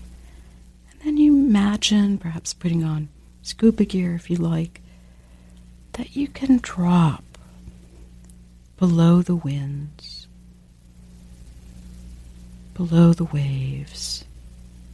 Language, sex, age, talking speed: English, female, 60-79, 90 wpm